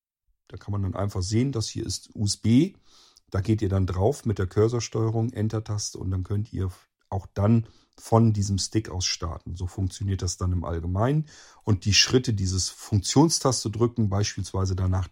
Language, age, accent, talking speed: German, 40-59, German, 175 wpm